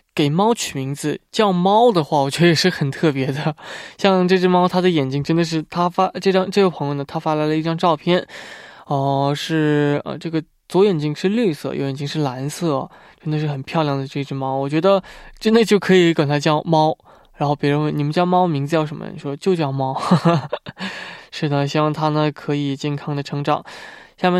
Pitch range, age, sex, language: 145-185 Hz, 20-39, male, Korean